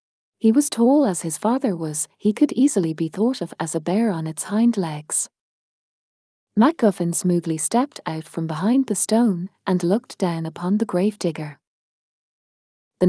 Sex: female